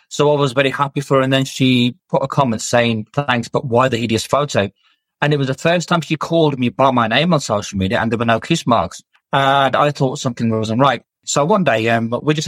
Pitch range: 120-145 Hz